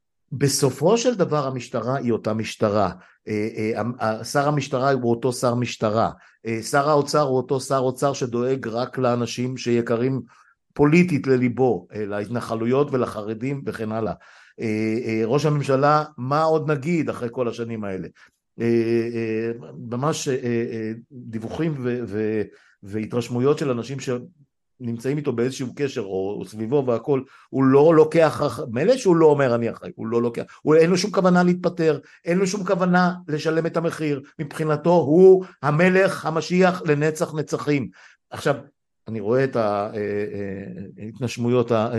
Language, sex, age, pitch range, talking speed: Hebrew, male, 50-69, 115-150 Hz, 125 wpm